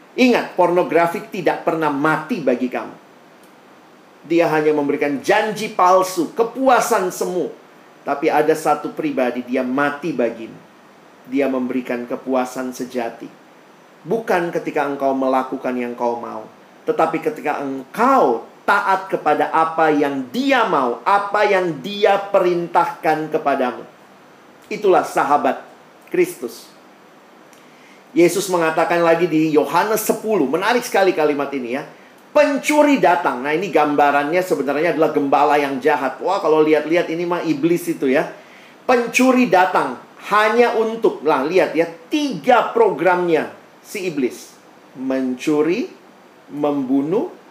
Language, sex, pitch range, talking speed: Indonesian, male, 145-200 Hz, 115 wpm